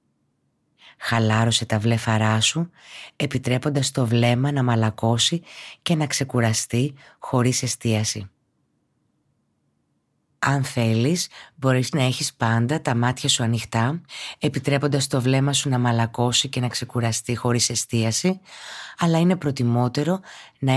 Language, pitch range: Greek, 120-165 Hz